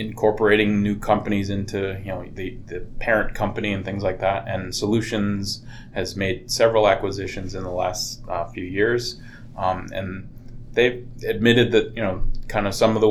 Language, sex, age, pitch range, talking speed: English, male, 20-39, 95-115 Hz, 175 wpm